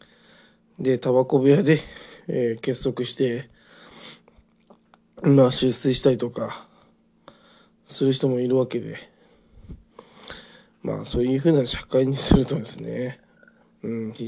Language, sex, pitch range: Japanese, male, 125-145 Hz